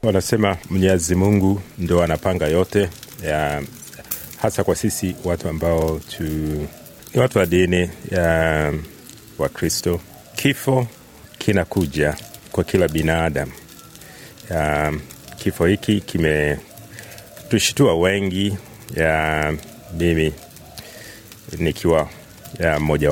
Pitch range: 80-100 Hz